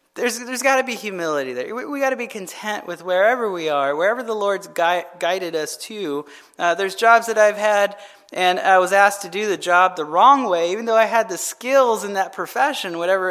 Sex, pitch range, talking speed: male, 180-245 Hz, 230 wpm